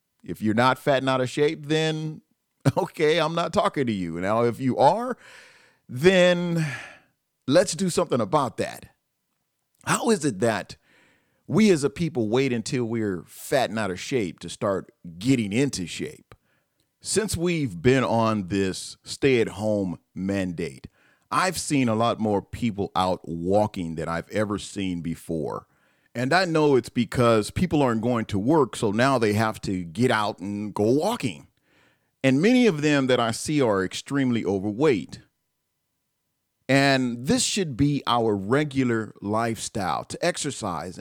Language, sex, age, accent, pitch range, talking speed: English, male, 40-59, American, 105-150 Hz, 155 wpm